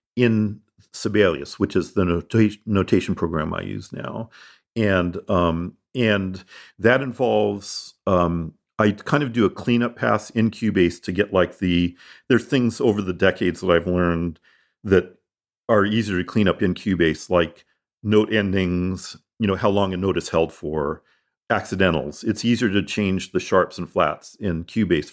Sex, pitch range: male, 90-110 Hz